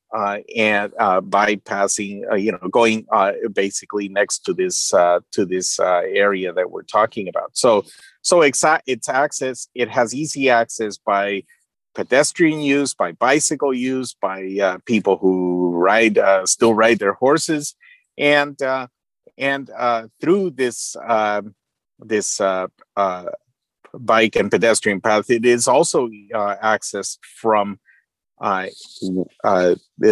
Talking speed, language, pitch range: 135 wpm, English, 100-125 Hz